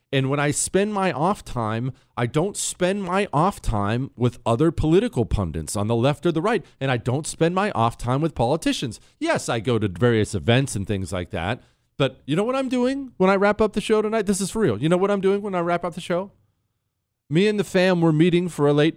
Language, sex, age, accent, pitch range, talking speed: English, male, 40-59, American, 110-170 Hz, 250 wpm